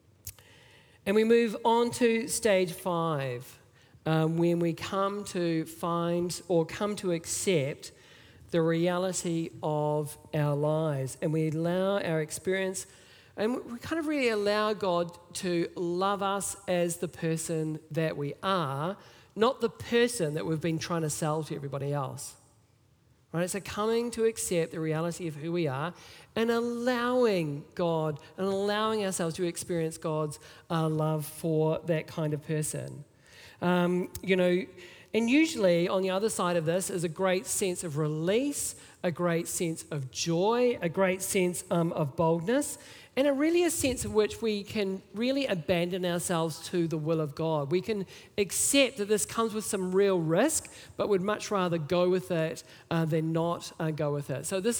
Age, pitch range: 50-69, 160-200 Hz